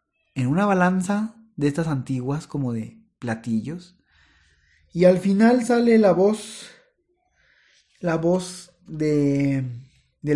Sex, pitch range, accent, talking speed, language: male, 130-180 Hz, Mexican, 110 wpm, Spanish